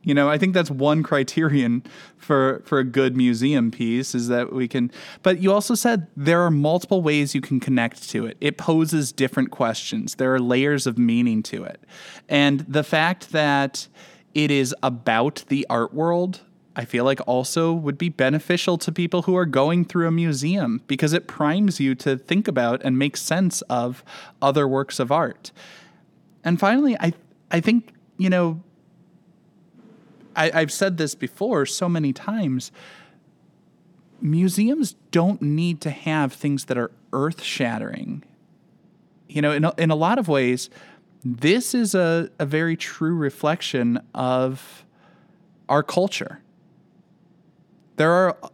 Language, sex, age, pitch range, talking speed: English, male, 20-39, 135-180 Hz, 155 wpm